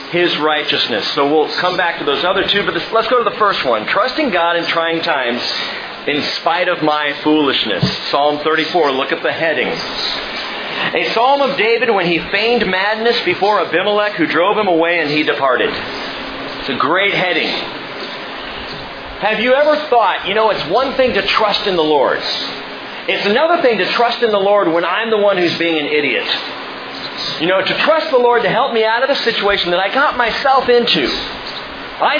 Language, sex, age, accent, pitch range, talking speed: English, male, 40-59, American, 160-245 Hz, 190 wpm